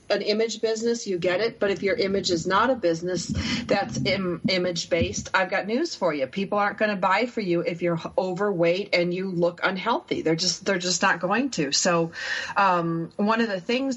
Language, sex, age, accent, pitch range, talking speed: English, female, 40-59, American, 170-205 Hz, 215 wpm